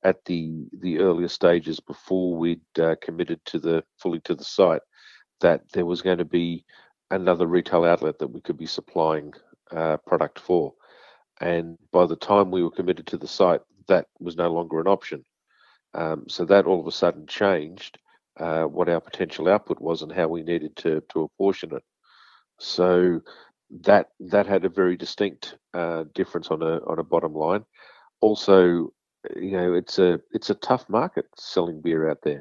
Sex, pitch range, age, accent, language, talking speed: male, 80-90 Hz, 50-69, Australian, English, 180 wpm